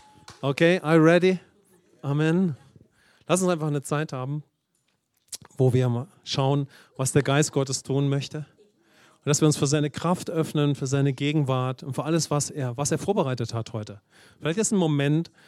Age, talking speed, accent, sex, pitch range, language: 40-59, 180 wpm, German, male, 135-160 Hz, English